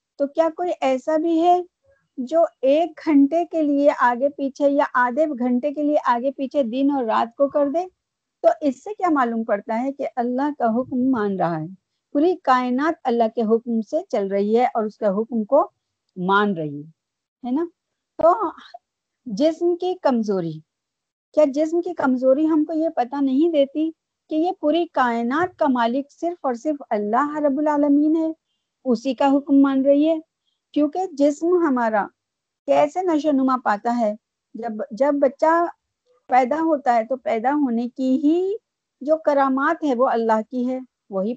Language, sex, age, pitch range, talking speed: Urdu, female, 50-69, 245-315 Hz, 170 wpm